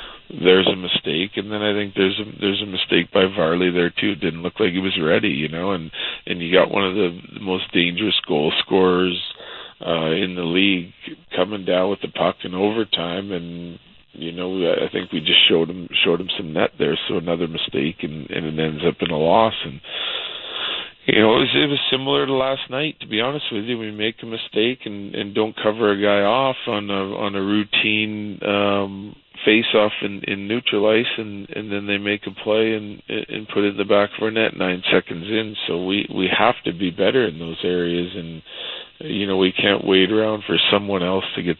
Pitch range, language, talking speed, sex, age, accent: 85-105 Hz, English, 220 wpm, male, 40-59, American